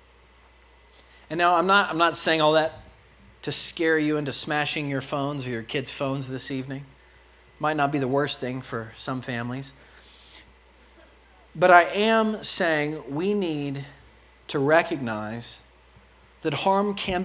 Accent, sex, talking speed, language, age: American, male, 145 wpm, English, 40-59